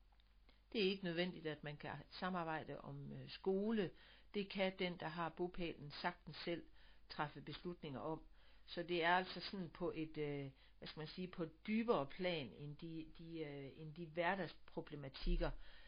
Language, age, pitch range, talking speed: Danish, 60-79, 150-180 Hz, 170 wpm